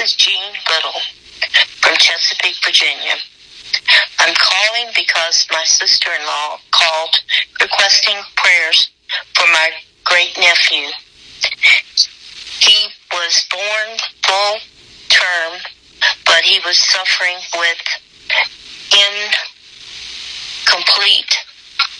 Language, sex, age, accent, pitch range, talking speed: English, female, 50-69, American, 165-185 Hz, 80 wpm